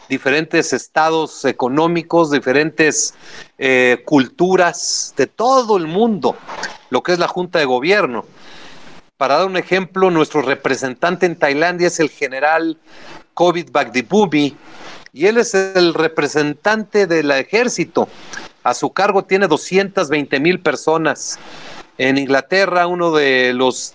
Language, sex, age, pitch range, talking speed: Spanish, male, 40-59, 145-185 Hz, 125 wpm